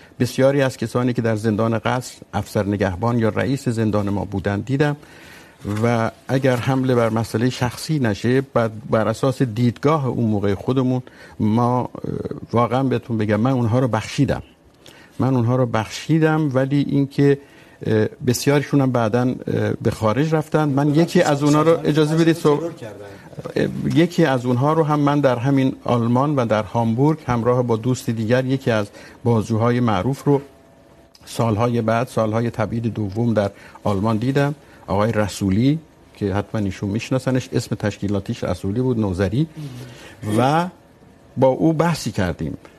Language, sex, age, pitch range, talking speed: Urdu, male, 50-69, 110-140 Hz, 70 wpm